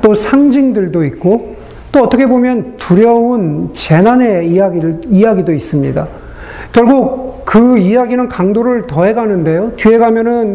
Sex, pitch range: male, 185-235 Hz